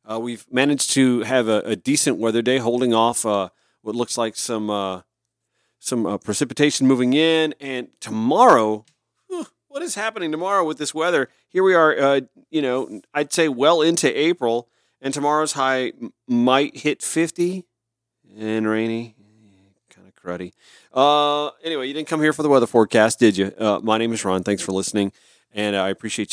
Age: 40-59